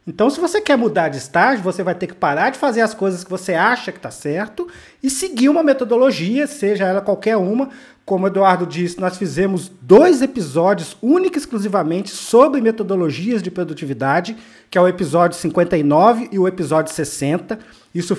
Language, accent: Portuguese, Brazilian